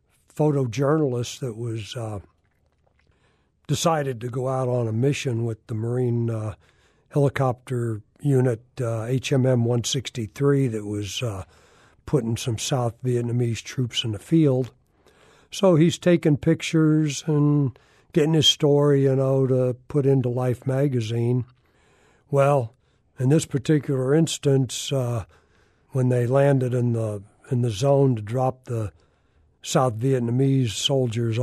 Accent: American